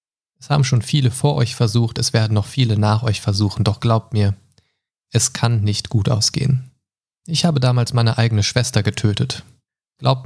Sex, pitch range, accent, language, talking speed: male, 110-135 Hz, German, German, 175 wpm